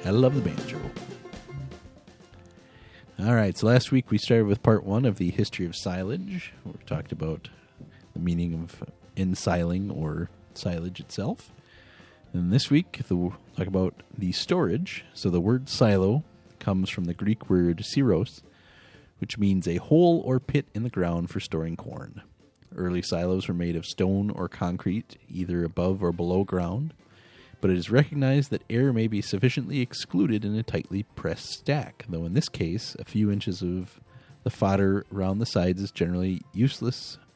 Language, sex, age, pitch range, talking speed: English, male, 30-49, 90-120 Hz, 165 wpm